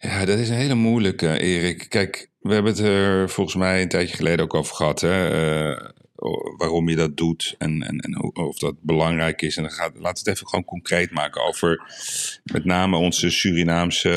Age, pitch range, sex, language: 40-59, 80-95 Hz, male, Dutch